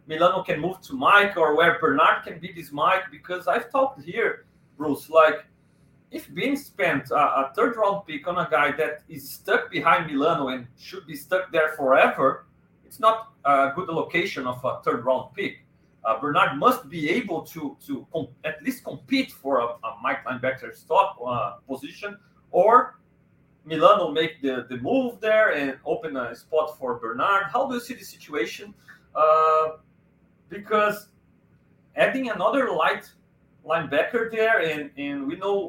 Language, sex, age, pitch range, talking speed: English, male, 40-59, 145-205 Hz, 165 wpm